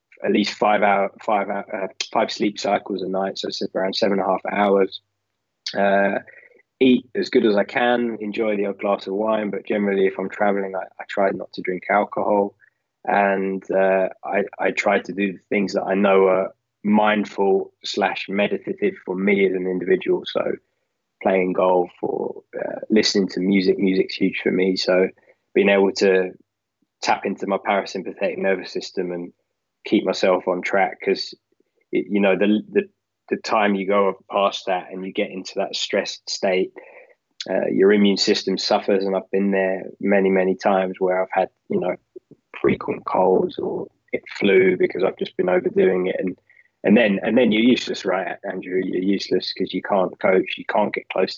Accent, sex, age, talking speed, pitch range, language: British, male, 20-39, 185 wpm, 95-105 Hz, English